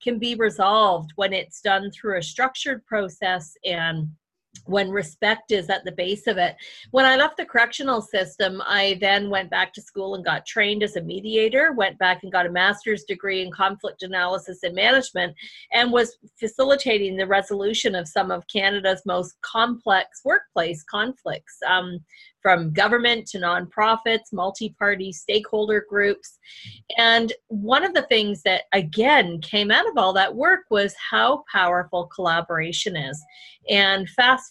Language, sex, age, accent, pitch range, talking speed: English, female, 30-49, American, 185-225 Hz, 155 wpm